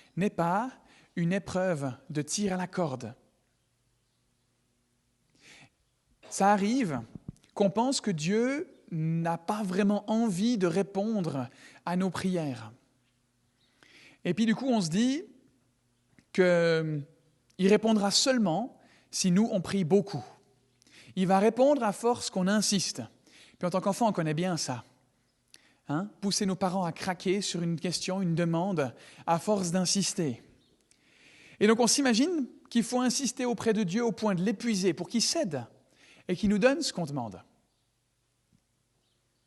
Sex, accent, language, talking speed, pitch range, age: male, French, French, 140 wpm, 145-215 Hz, 40-59